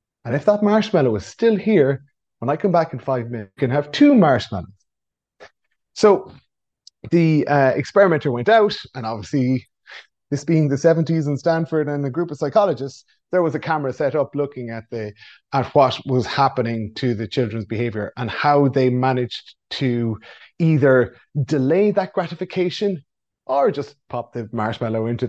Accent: Irish